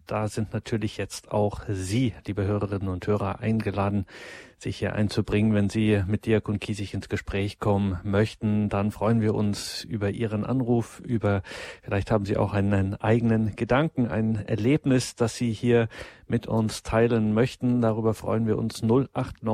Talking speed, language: 165 wpm, German